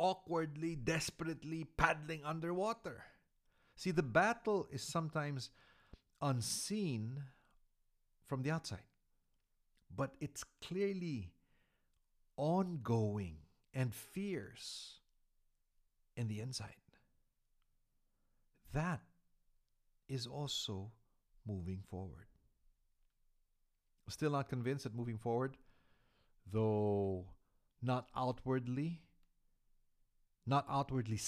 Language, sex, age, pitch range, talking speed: English, male, 50-69, 100-145 Hz, 75 wpm